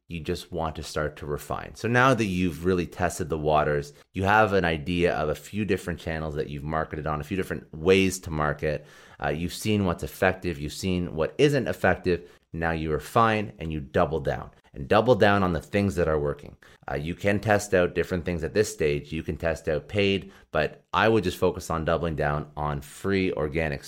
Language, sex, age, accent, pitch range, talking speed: English, male, 30-49, American, 80-100 Hz, 215 wpm